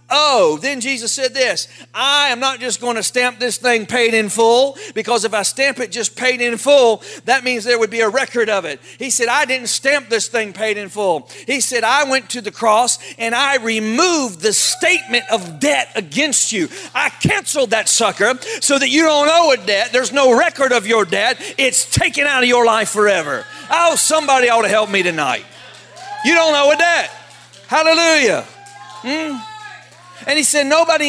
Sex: male